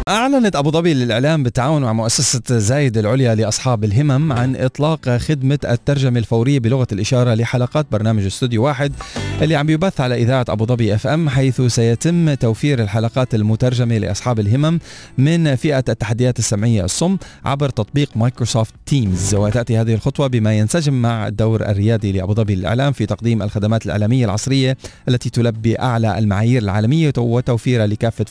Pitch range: 110-135 Hz